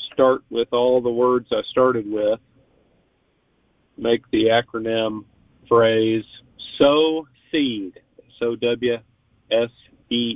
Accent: American